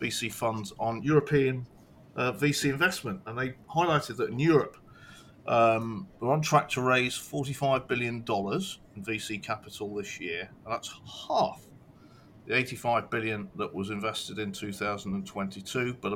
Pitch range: 105-140 Hz